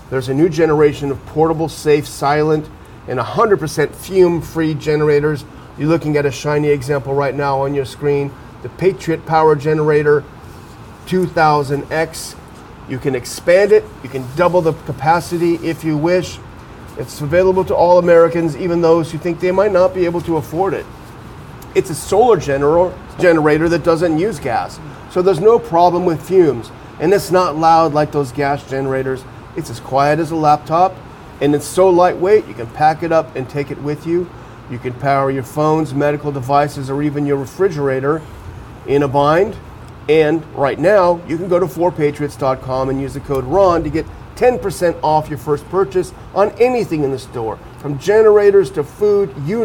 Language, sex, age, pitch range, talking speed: English, male, 40-59, 140-175 Hz, 175 wpm